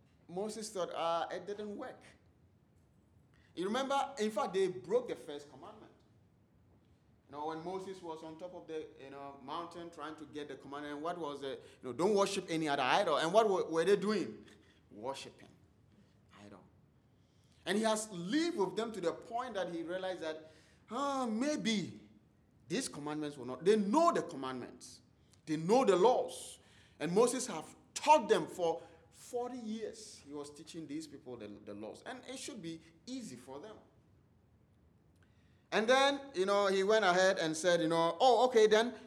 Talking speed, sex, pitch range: 175 wpm, male, 150-240 Hz